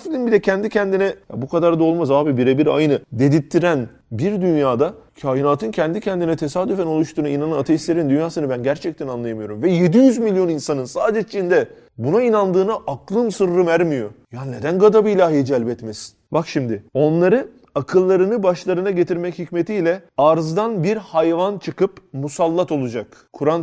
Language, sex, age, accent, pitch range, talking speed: Turkish, male, 30-49, native, 130-175 Hz, 140 wpm